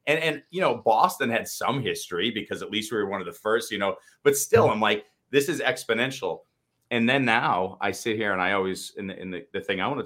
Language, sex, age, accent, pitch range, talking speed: English, male, 30-49, American, 90-120 Hz, 270 wpm